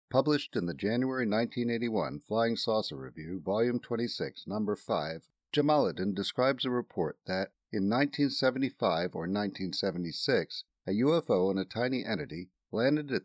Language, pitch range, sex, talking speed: English, 100-135 Hz, male, 130 wpm